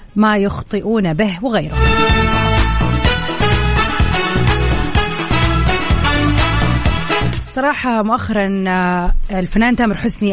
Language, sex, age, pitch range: Arabic, female, 30-49, 175-220 Hz